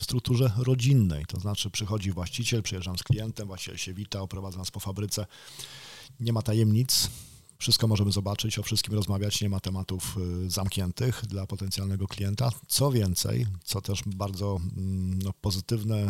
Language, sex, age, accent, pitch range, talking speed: Polish, male, 40-59, native, 100-120 Hz, 145 wpm